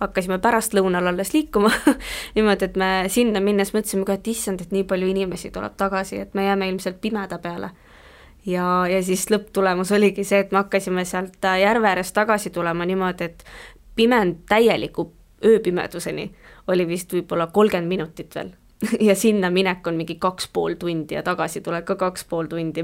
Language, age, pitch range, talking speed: English, 20-39, 180-210 Hz, 170 wpm